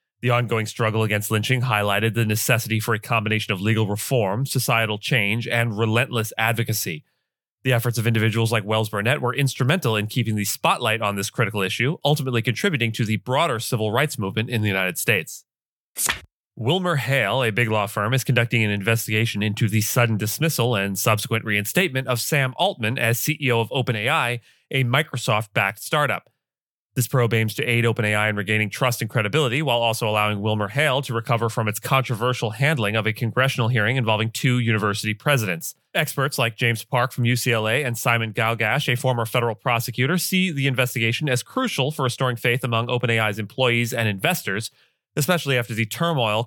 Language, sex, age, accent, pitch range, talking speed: English, male, 30-49, American, 110-130 Hz, 175 wpm